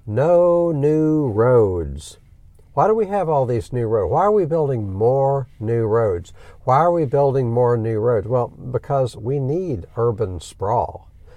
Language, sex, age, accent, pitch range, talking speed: English, male, 60-79, American, 95-130 Hz, 165 wpm